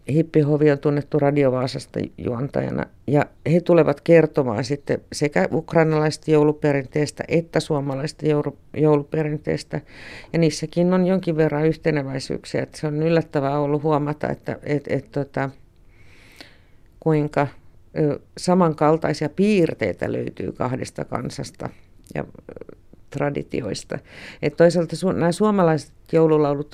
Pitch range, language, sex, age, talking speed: 135-160 Hz, Finnish, female, 50-69, 105 wpm